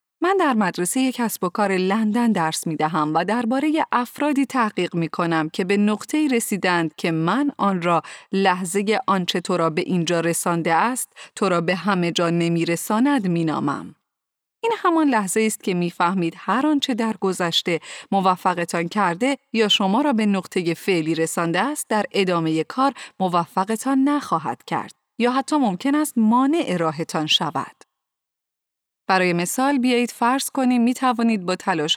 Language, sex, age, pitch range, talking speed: Persian, female, 30-49, 175-240 Hz, 145 wpm